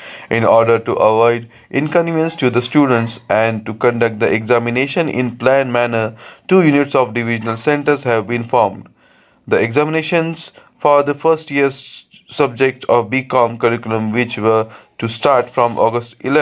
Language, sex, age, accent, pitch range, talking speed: Marathi, male, 20-39, native, 115-140 Hz, 145 wpm